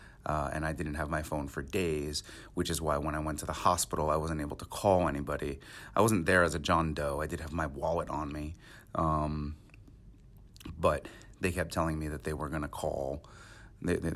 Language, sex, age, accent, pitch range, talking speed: English, male, 30-49, American, 75-95 Hz, 215 wpm